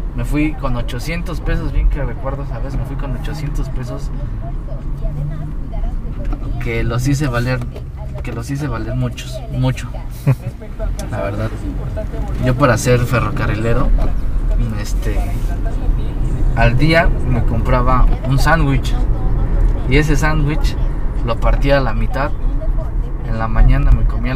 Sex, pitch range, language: male, 110-130 Hz, Spanish